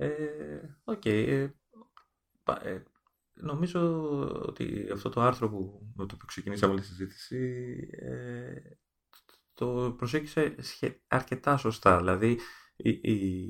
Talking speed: 100 wpm